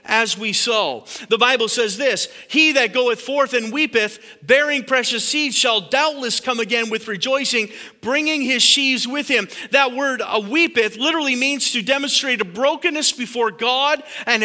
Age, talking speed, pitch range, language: 40-59, 165 wpm, 195-275 Hz, English